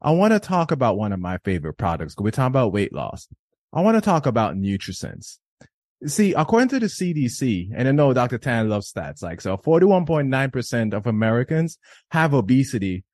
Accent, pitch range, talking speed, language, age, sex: American, 115-160 Hz, 185 wpm, English, 30-49, male